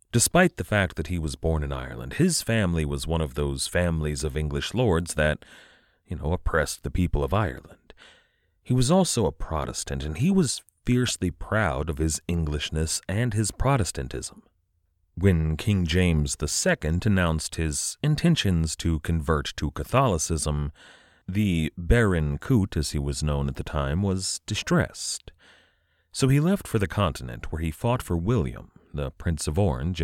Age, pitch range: 30-49, 75-100 Hz